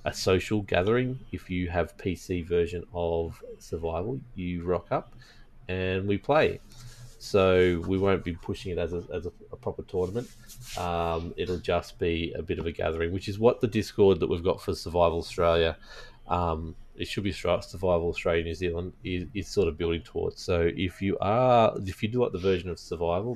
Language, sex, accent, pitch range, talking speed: English, male, Australian, 85-110 Hz, 190 wpm